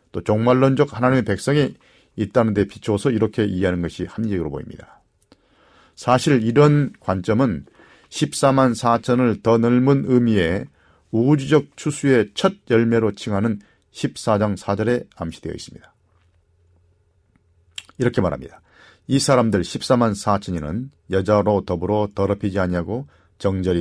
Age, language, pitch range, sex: 40-59, Korean, 95-130 Hz, male